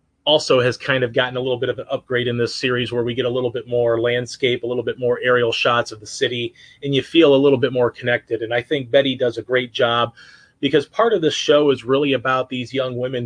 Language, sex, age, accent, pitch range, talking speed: English, male, 30-49, American, 125-145 Hz, 260 wpm